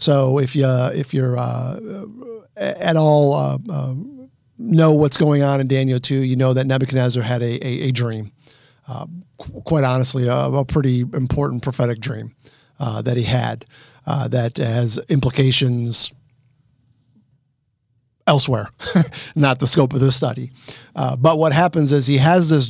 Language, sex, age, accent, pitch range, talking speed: English, male, 50-69, American, 125-150 Hz, 155 wpm